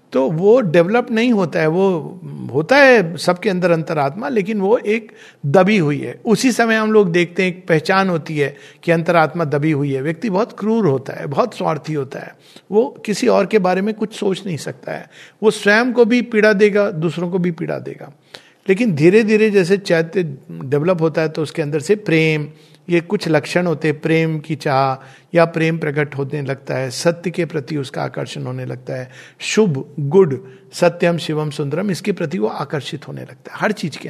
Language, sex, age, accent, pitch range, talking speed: Hindi, male, 50-69, native, 150-200 Hz, 200 wpm